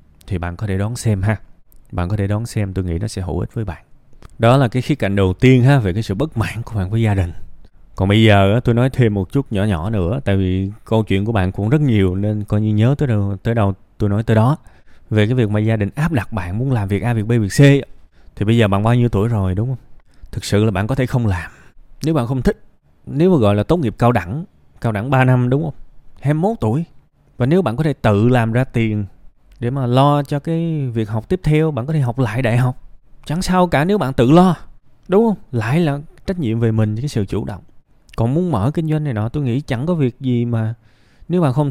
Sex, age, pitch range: male, 20-39, 105-135 Hz